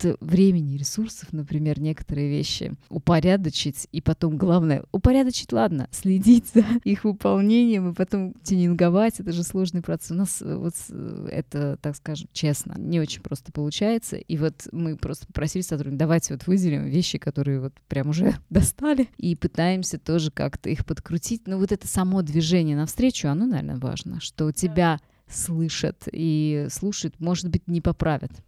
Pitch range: 150-185 Hz